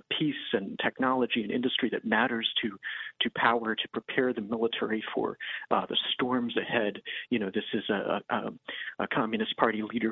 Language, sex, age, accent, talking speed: English, male, 40-59, American, 165 wpm